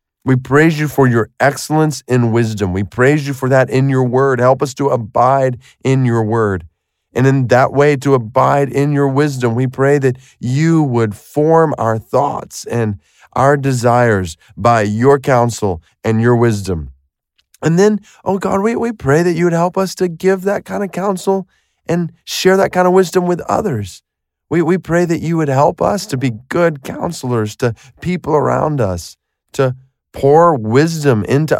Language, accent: English, American